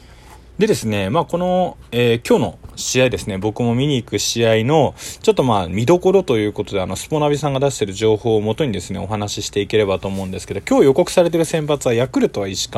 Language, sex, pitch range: Japanese, male, 100-150 Hz